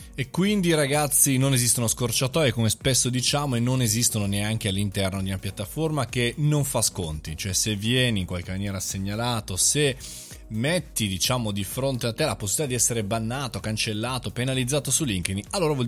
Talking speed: 175 wpm